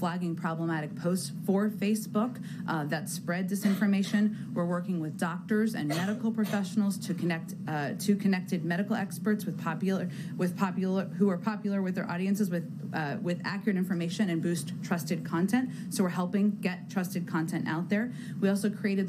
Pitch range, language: 175-205 Hz, English